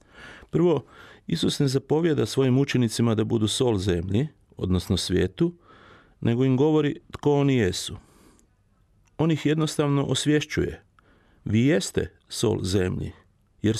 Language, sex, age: Croatian, male, 40-59